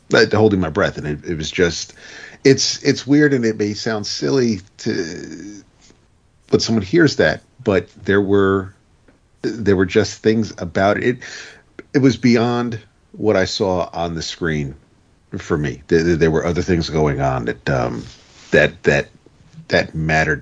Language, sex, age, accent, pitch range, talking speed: English, male, 40-59, American, 80-110 Hz, 160 wpm